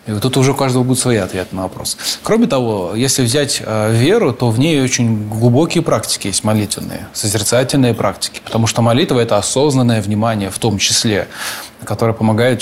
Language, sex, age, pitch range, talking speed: Russian, male, 20-39, 115-145 Hz, 185 wpm